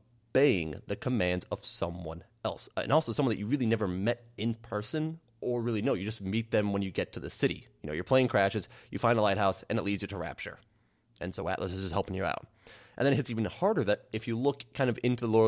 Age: 30-49